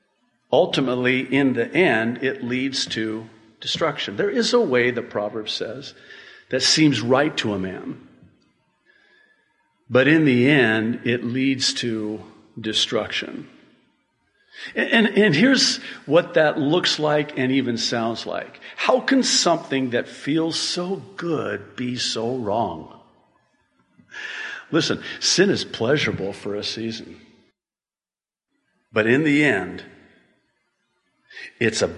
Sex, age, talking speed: male, 50-69, 120 wpm